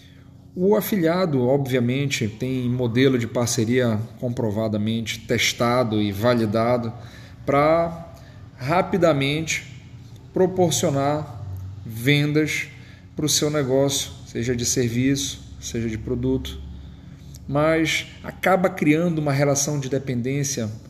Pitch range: 120-145 Hz